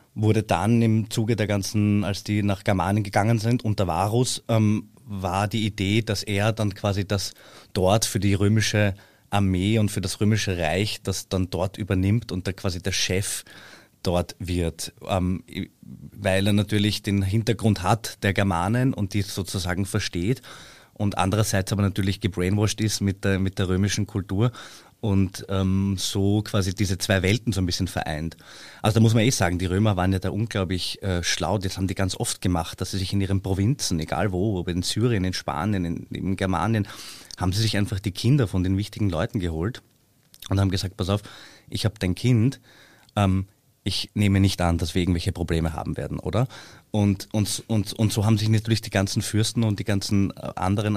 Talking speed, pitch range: 190 wpm, 95-110 Hz